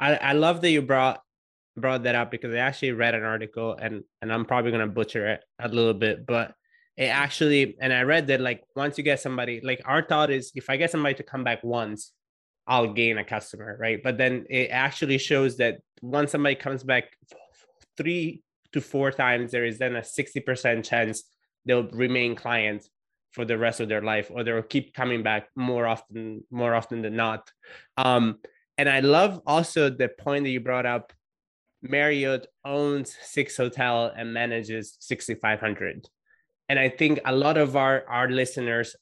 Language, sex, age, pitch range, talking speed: English, male, 20-39, 115-140 Hz, 185 wpm